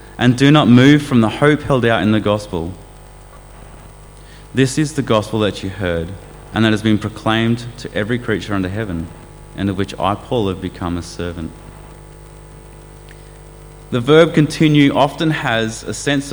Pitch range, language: 100-125 Hz, English